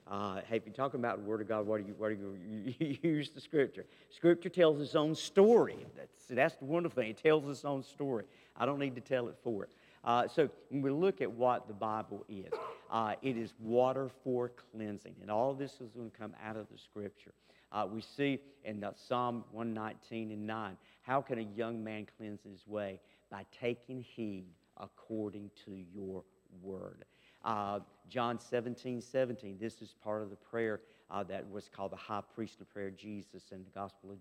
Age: 50-69